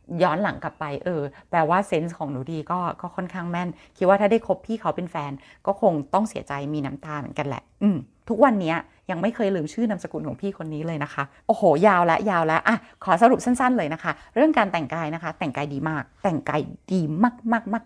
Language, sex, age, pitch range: Thai, female, 30-49, 160-215 Hz